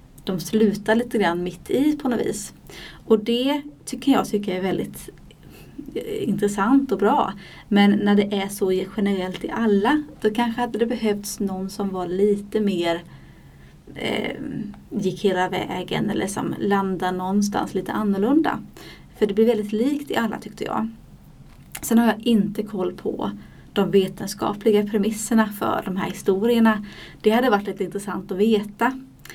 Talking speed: 155 wpm